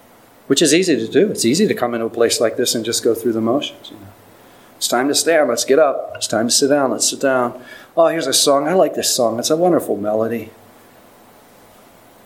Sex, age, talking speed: male, 40-59, 230 wpm